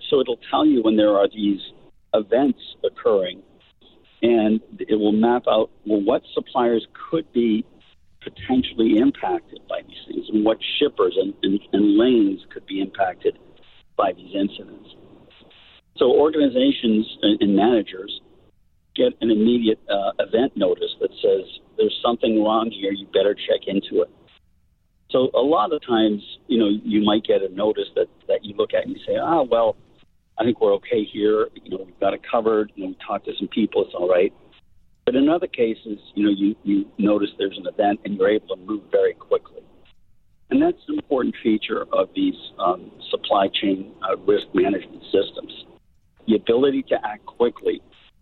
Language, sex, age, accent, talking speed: English, male, 50-69, American, 180 wpm